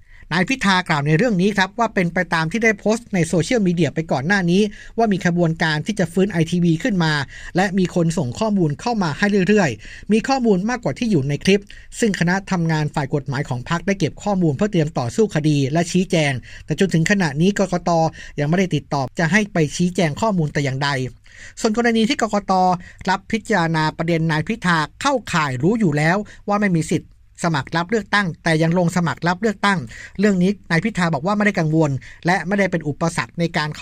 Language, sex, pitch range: Thai, male, 155-195 Hz